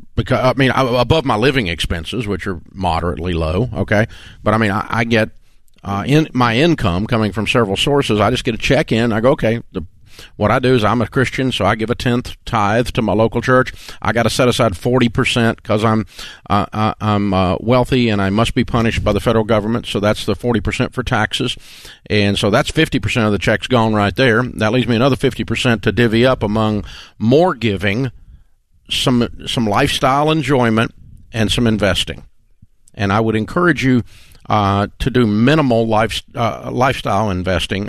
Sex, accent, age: male, American, 50-69